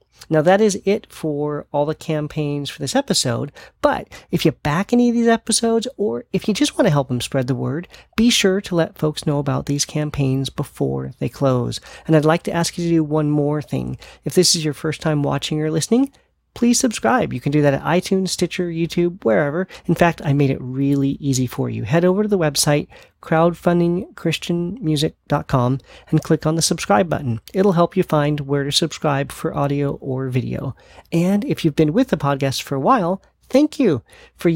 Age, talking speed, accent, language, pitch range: 40-59, 205 wpm, American, English, 145-190 Hz